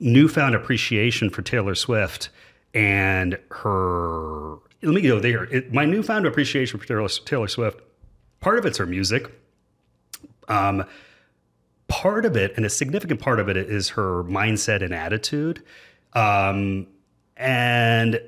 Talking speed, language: 140 wpm, English